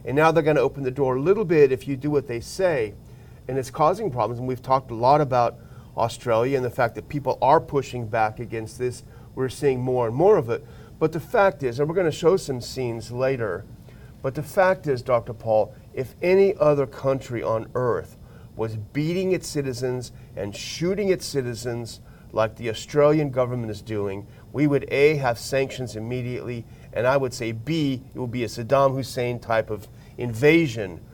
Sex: male